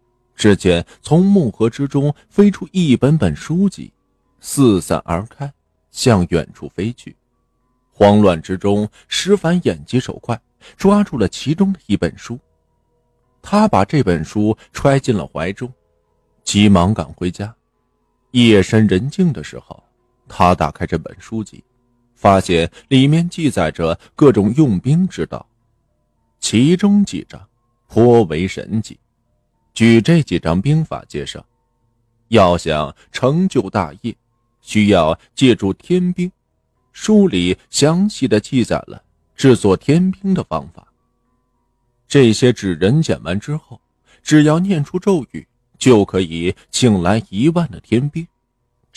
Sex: male